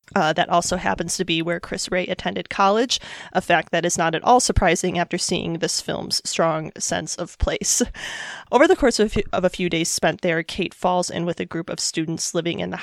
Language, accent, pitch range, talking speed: English, American, 165-190 Hz, 225 wpm